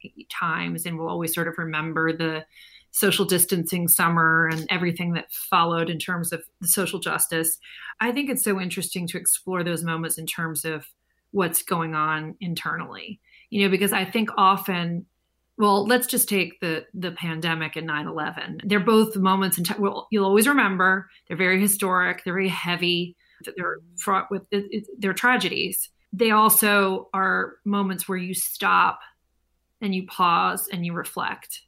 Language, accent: English, American